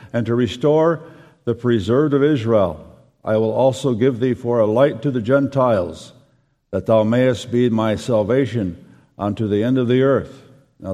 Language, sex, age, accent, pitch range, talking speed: English, male, 60-79, American, 115-140 Hz, 170 wpm